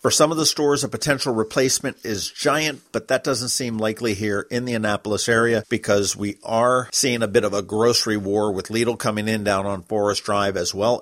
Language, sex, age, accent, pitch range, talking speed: English, male, 50-69, American, 105-125 Hz, 220 wpm